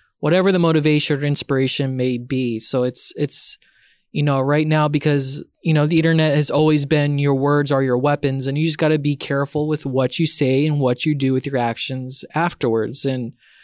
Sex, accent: male, American